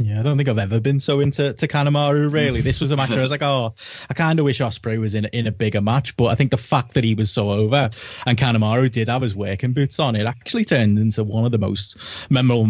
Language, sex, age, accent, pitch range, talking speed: English, male, 20-39, British, 110-140 Hz, 280 wpm